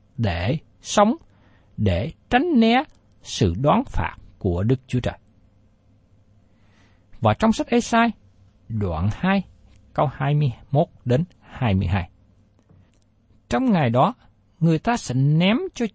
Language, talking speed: Vietnamese, 115 wpm